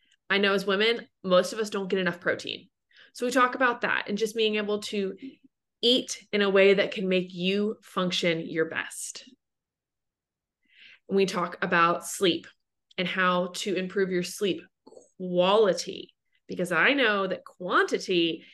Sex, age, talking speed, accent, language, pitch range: female, 20-39, 160 wpm, American, English, 180-225 Hz